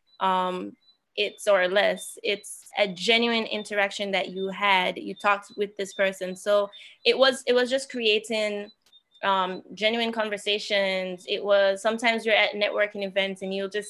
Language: English